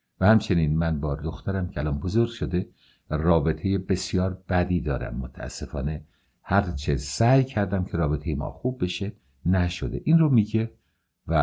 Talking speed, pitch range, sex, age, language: 150 wpm, 80-115 Hz, male, 60-79, English